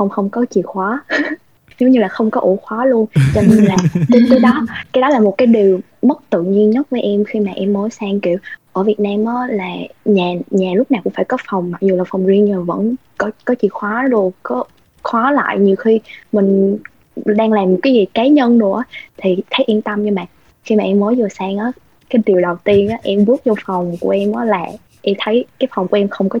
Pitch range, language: 195-245 Hz, Vietnamese